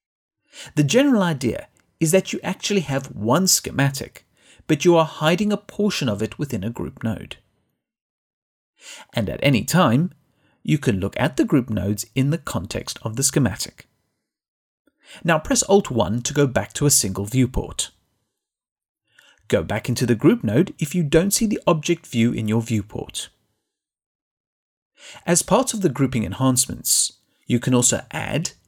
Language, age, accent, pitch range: English, 40-59, British, 115-185 Hz